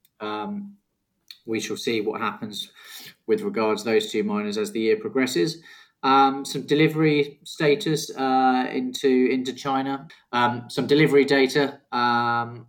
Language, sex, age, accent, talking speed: English, male, 20-39, British, 135 wpm